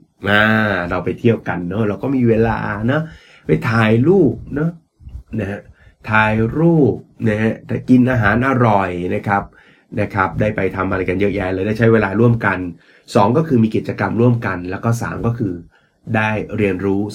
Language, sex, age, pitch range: Thai, male, 20-39, 95-115 Hz